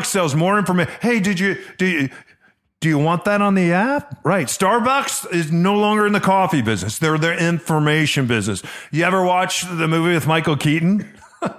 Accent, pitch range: American, 125-180 Hz